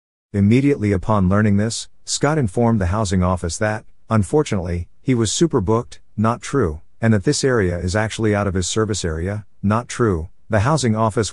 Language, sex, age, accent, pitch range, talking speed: English, male, 50-69, American, 90-115 Hz, 175 wpm